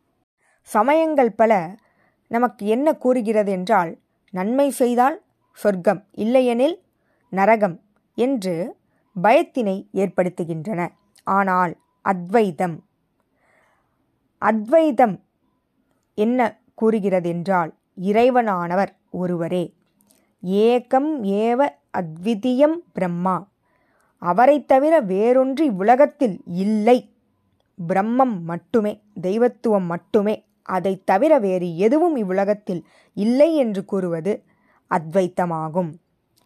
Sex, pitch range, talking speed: female, 190-250 Hz, 70 wpm